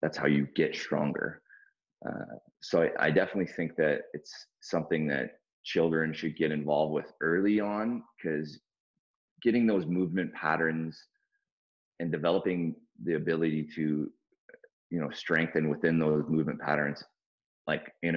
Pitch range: 75-90 Hz